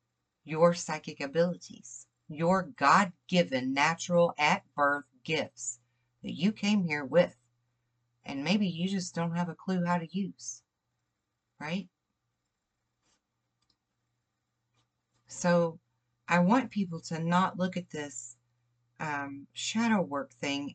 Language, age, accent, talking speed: English, 40-59, American, 110 wpm